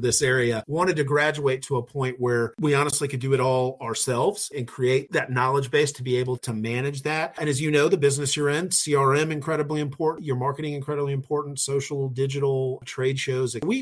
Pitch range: 125-150 Hz